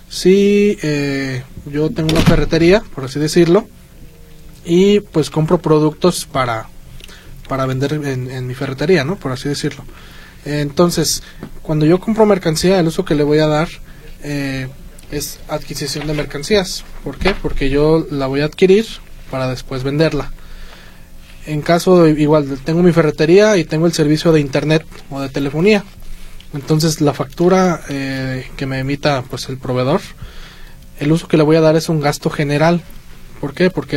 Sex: male